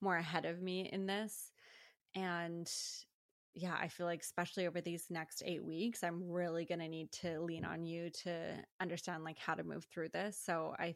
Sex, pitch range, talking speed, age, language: female, 170-200 Hz, 190 wpm, 20-39, English